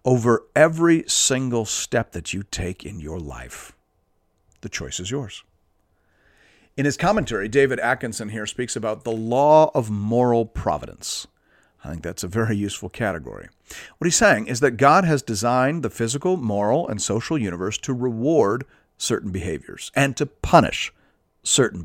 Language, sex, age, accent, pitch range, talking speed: English, male, 50-69, American, 95-135 Hz, 155 wpm